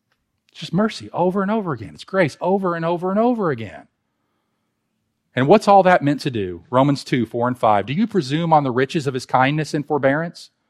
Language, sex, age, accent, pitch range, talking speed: English, male, 40-59, American, 120-195 Hz, 215 wpm